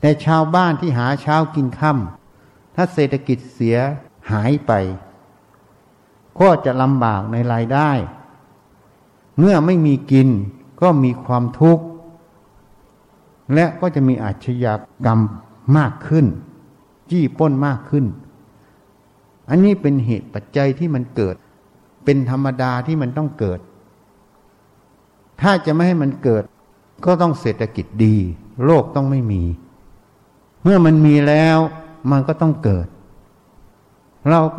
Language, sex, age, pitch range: Thai, male, 60-79, 110-155 Hz